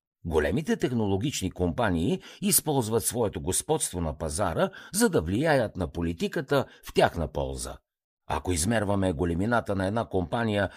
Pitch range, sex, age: 90-130 Hz, male, 50-69